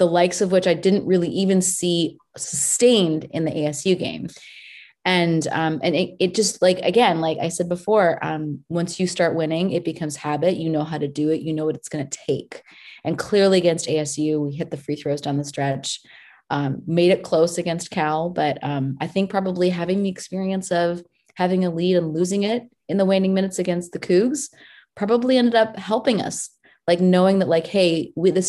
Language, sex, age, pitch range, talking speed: English, female, 20-39, 165-200 Hz, 205 wpm